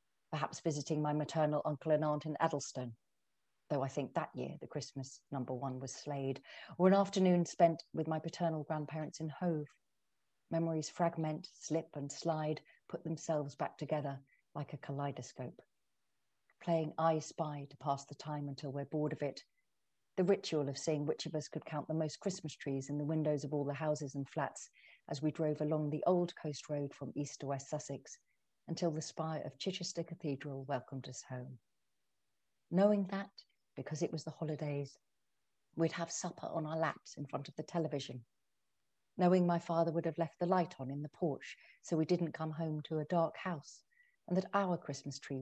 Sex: female